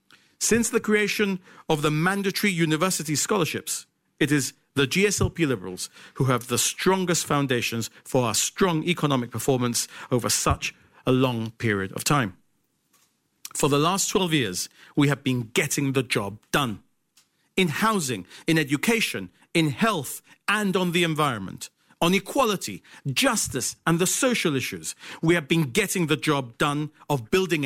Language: English